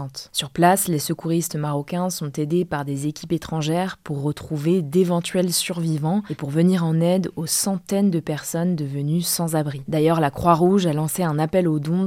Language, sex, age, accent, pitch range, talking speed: French, female, 20-39, French, 150-180 Hz, 180 wpm